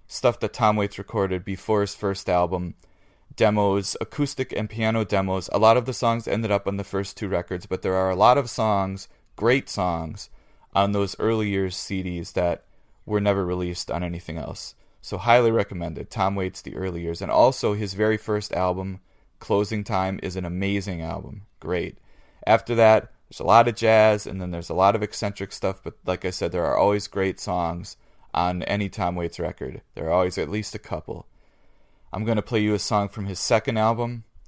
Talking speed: 200 wpm